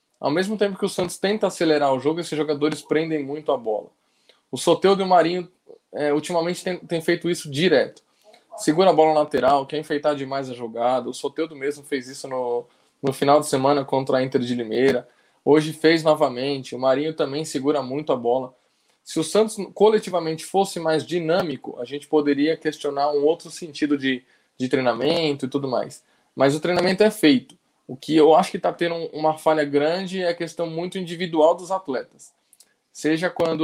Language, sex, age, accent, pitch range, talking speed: Portuguese, male, 10-29, Brazilian, 145-170 Hz, 185 wpm